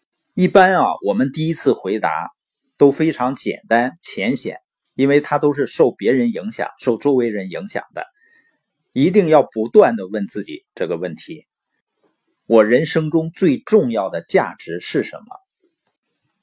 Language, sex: Chinese, male